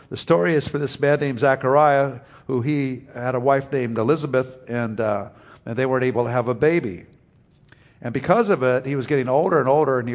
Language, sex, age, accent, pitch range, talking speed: English, male, 50-69, American, 120-145 Hz, 220 wpm